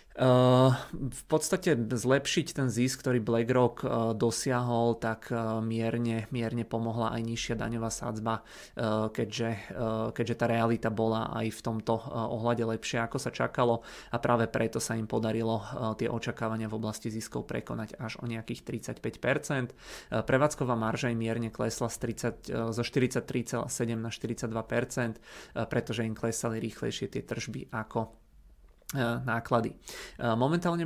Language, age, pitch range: Czech, 30-49, 115-120 Hz